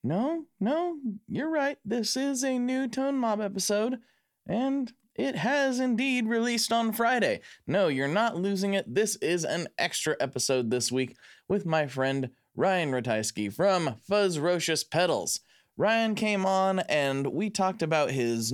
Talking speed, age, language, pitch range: 150 wpm, 20-39, English, 140-215 Hz